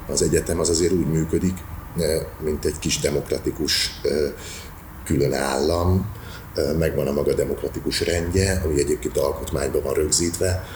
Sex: male